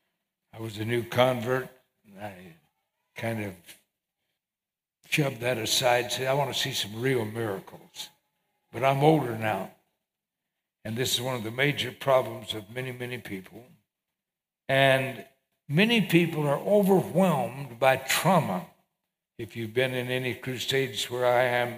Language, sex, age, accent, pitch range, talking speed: English, male, 60-79, American, 110-140 Hz, 145 wpm